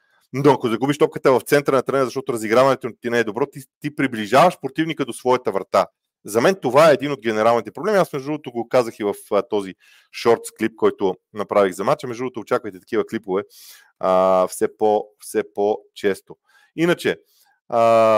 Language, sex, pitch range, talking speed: Bulgarian, male, 110-160 Hz, 190 wpm